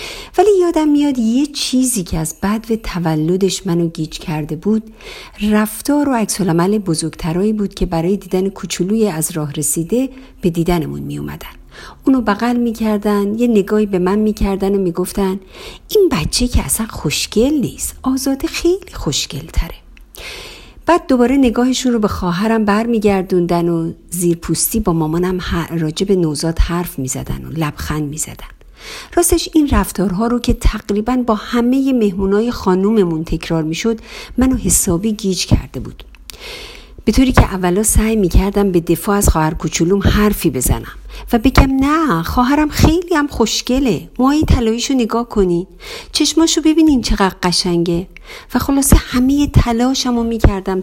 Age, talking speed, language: 50-69, 145 wpm, Persian